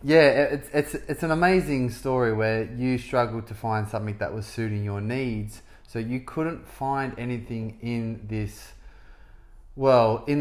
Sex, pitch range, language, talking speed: male, 105-135 Hz, English, 155 wpm